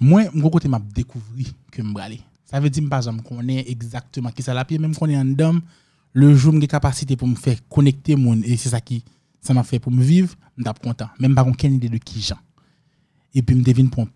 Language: French